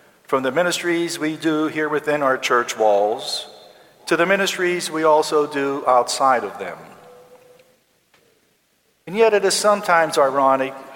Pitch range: 125-150 Hz